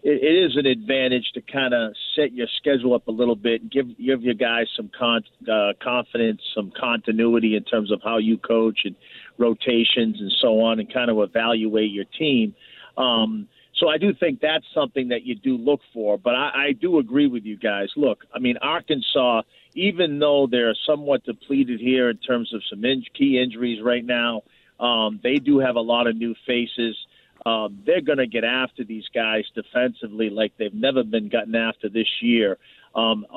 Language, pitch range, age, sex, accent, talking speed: English, 115-130 Hz, 50-69, male, American, 190 wpm